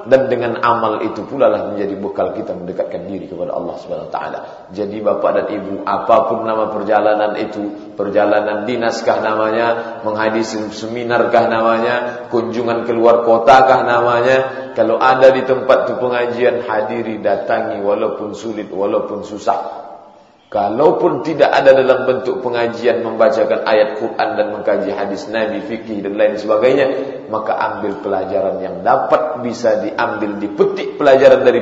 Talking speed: 140 wpm